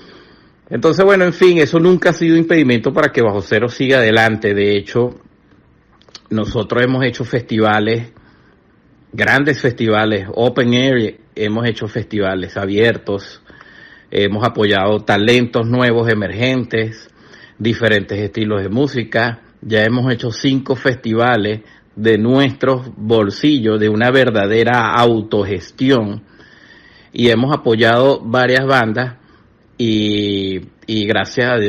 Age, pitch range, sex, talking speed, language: 50-69, 105-125 Hz, male, 110 wpm, Spanish